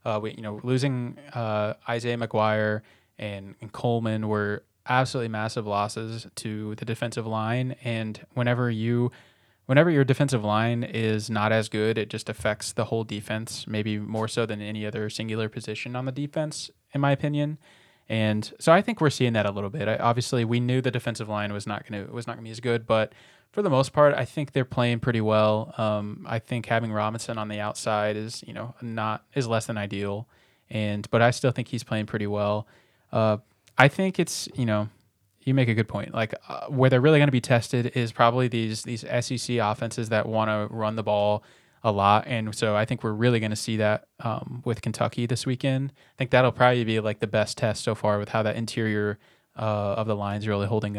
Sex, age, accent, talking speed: male, 20-39, American, 215 wpm